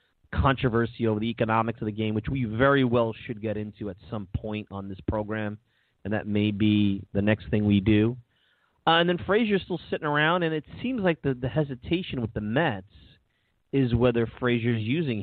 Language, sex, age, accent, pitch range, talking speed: English, male, 30-49, American, 105-135 Hz, 195 wpm